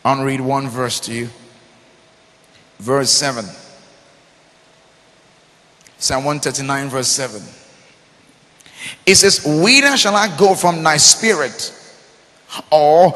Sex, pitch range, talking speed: male, 160-215 Hz, 100 wpm